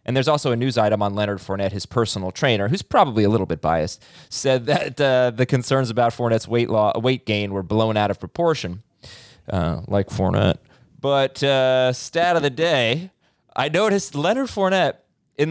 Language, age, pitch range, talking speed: English, 20-39, 115-160 Hz, 180 wpm